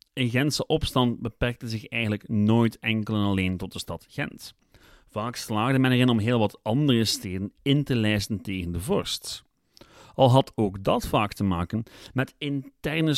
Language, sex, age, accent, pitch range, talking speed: Dutch, male, 30-49, Dutch, 105-135 Hz, 175 wpm